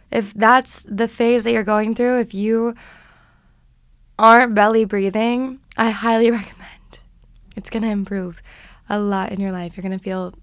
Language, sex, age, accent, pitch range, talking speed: English, female, 20-39, American, 185-220 Hz, 155 wpm